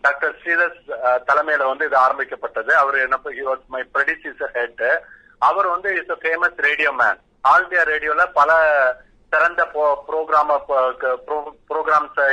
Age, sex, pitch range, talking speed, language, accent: 30-49, male, 140-175 Hz, 110 wpm, Tamil, native